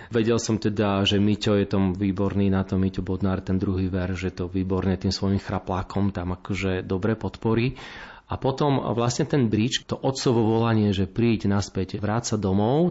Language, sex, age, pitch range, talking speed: Slovak, male, 30-49, 100-115 Hz, 175 wpm